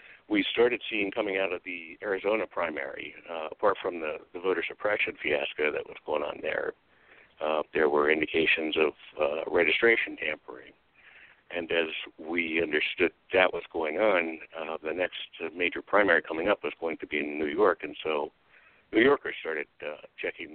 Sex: male